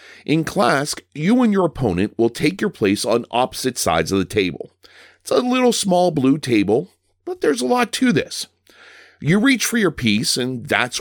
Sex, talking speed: male, 190 wpm